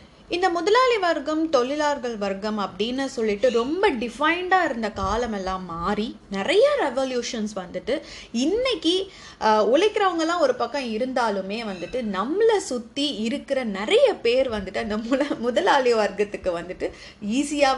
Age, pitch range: 30-49, 200-280 Hz